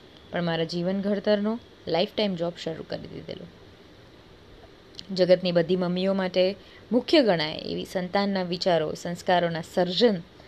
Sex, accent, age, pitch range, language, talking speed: female, native, 20-39, 180-275 Hz, Gujarati, 120 wpm